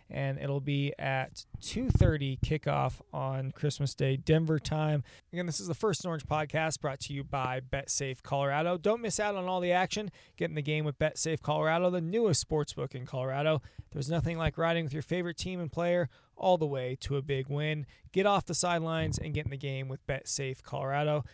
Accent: American